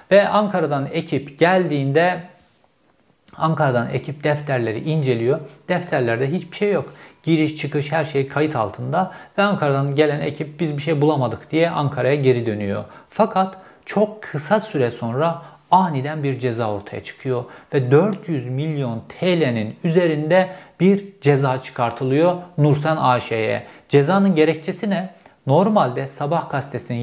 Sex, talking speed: male, 125 wpm